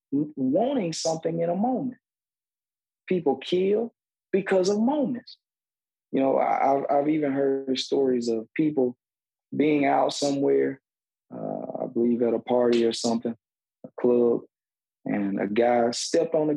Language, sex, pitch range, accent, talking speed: English, male, 120-195 Hz, American, 140 wpm